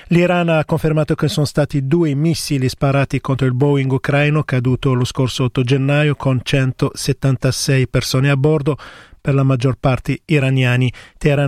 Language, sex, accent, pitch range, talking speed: Italian, male, native, 130-150 Hz, 150 wpm